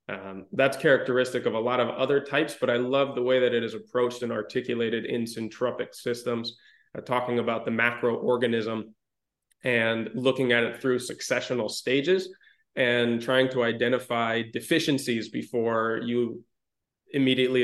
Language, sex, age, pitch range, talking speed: English, male, 20-39, 120-135 Hz, 145 wpm